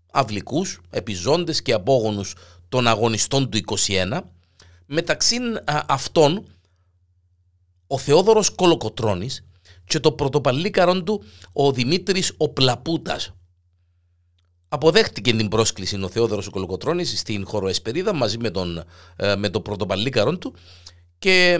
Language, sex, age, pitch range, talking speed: Greek, male, 50-69, 90-150 Hz, 105 wpm